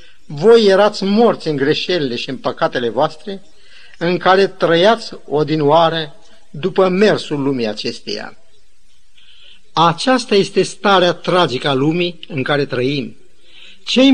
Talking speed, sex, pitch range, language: 115 wpm, male, 155-205 Hz, Romanian